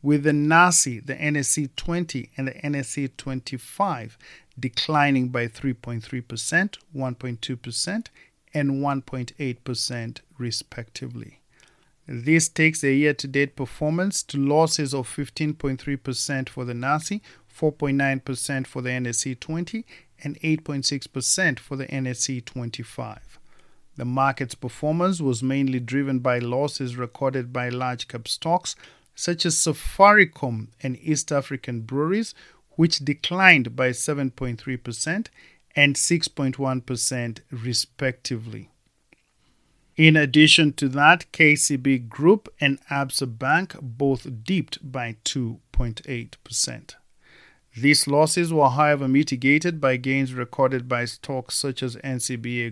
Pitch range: 125-150 Hz